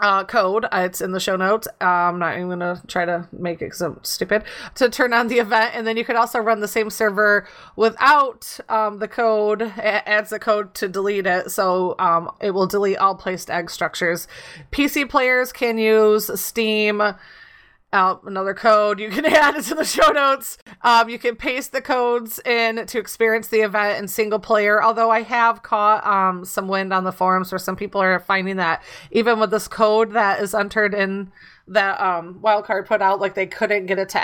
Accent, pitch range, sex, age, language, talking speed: American, 190-235 Hz, female, 30-49, English, 210 wpm